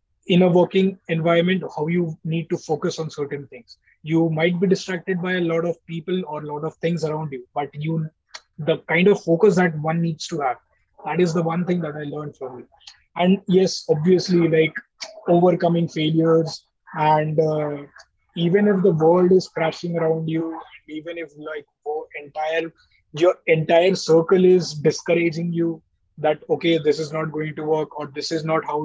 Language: English